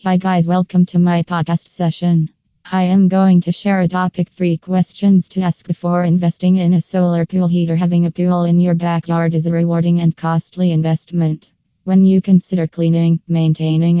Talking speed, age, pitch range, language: 180 wpm, 20-39, 165-180 Hz, English